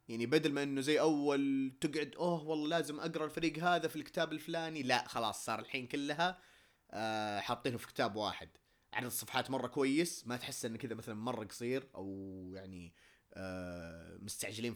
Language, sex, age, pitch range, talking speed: Arabic, male, 20-39, 115-155 Hz, 165 wpm